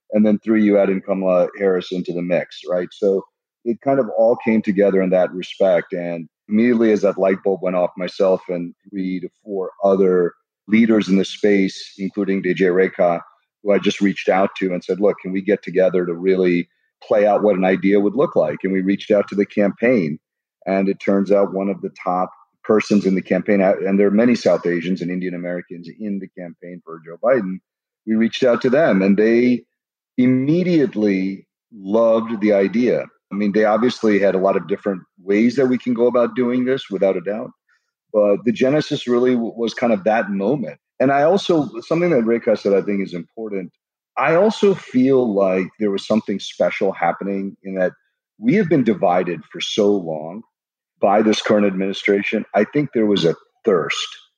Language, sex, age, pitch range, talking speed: English, male, 40-59, 95-115 Hz, 200 wpm